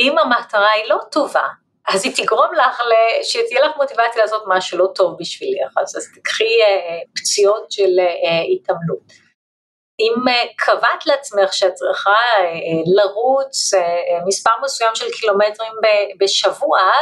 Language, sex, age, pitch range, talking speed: Hebrew, female, 30-49, 185-270 Hz, 120 wpm